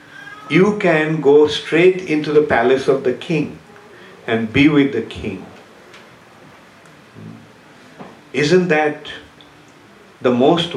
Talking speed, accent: 105 wpm, Indian